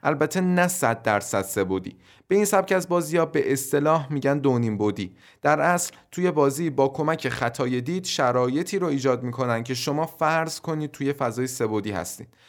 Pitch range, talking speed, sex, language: 120-160 Hz, 165 wpm, male, Persian